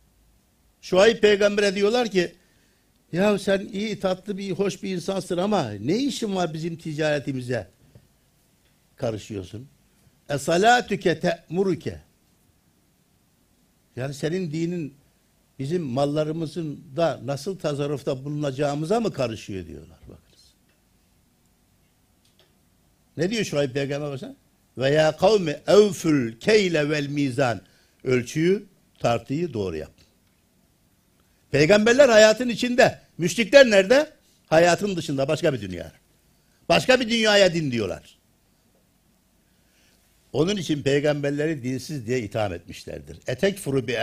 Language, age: Turkish, 60-79